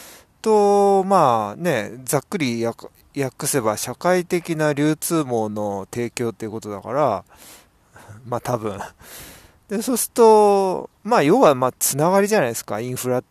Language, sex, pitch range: Japanese, male, 115-155 Hz